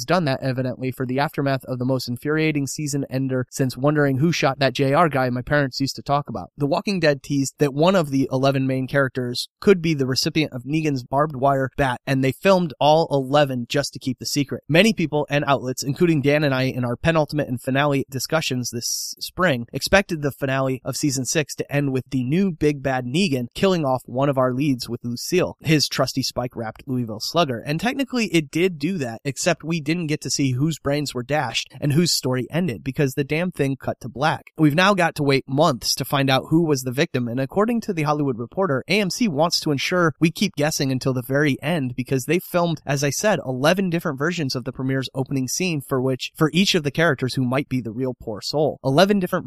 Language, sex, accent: English, male, American